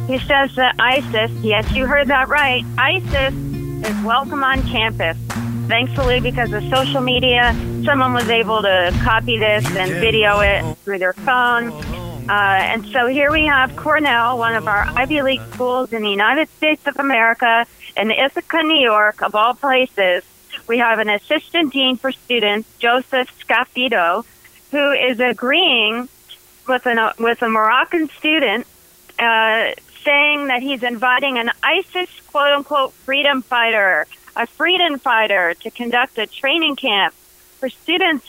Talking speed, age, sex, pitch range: 150 wpm, 40-59, female, 210-275 Hz